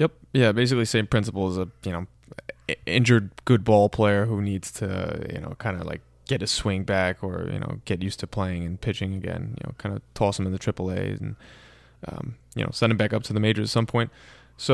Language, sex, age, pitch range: English, male, 20-39, 100-120 Hz